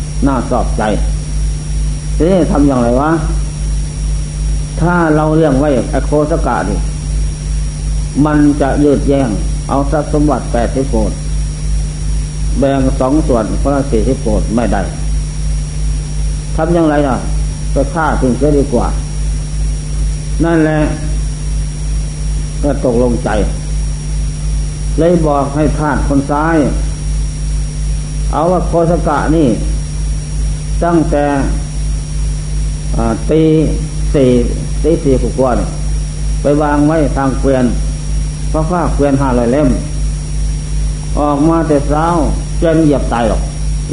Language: Thai